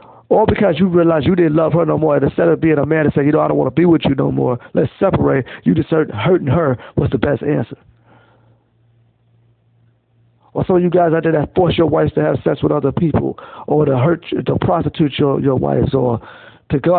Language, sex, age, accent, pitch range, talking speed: English, male, 50-69, American, 120-160 Hz, 235 wpm